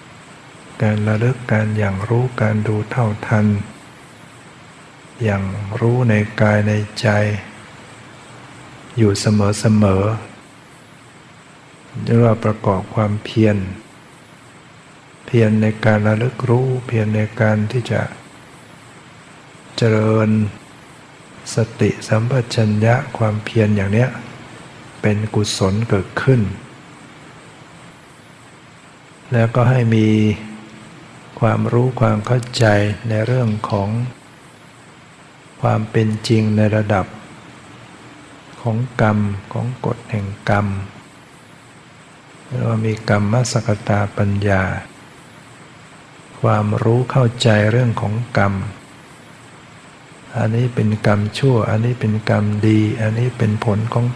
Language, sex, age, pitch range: Thai, male, 60-79, 105-125 Hz